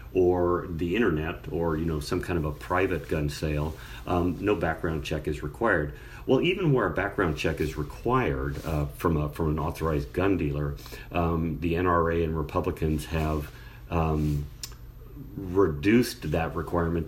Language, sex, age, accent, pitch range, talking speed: English, male, 40-59, American, 75-90 Hz, 165 wpm